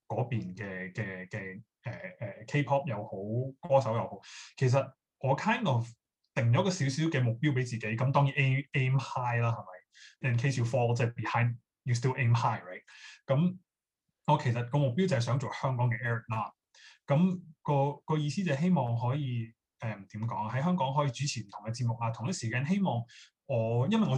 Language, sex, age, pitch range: Chinese, male, 20-39, 115-145 Hz